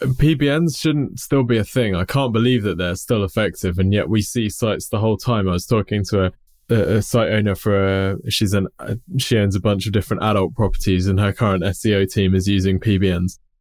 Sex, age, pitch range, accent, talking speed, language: male, 20-39, 95-125 Hz, British, 215 wpm, English